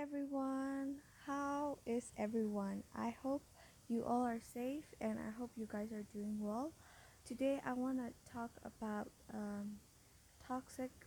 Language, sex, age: English, female, 20-39